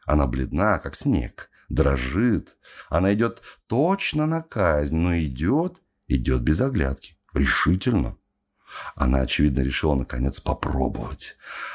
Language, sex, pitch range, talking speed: Russian, male, 80-135 Hz, 105 wpm